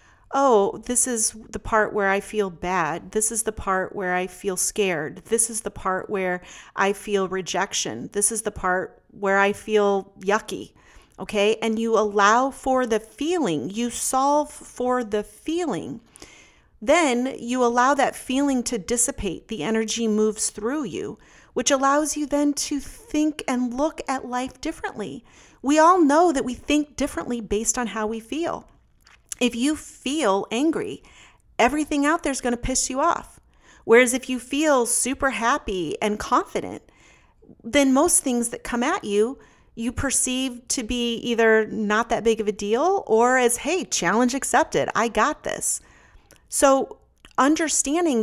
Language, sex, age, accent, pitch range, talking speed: English, female, 40-59, American, 215-275 Hz, 160 wpm